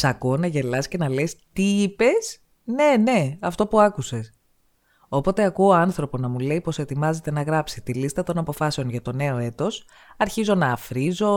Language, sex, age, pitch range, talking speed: Greek, female, 20-39, 140-210 Hz, 180 wpm